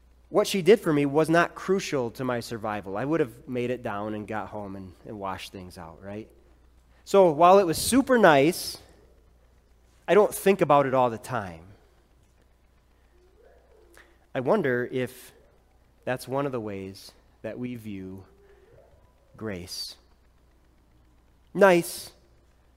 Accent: American